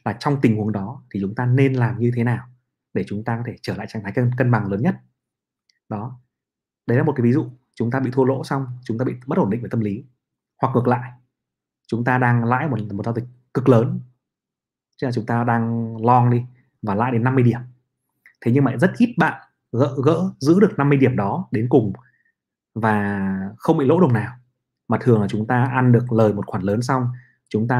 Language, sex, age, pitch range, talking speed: Vietnamese, male, 20-39, 110-135 Hz, 235 wpm